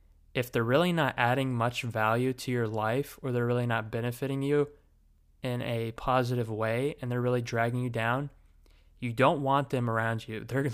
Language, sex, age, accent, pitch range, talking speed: English, male, 20-39, American, 110-130 Hz, 185 wpm